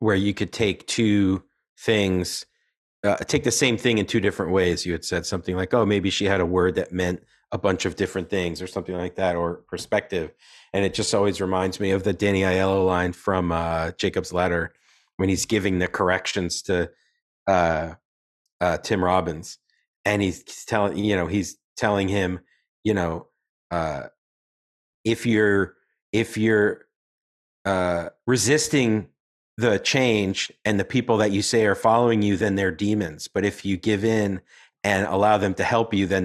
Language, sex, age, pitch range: English, male, 40-59, 90-105 Hz